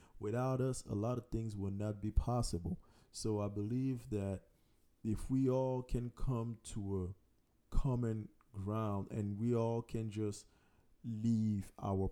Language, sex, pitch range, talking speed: English, male, 100-115 Hz, 150 wpm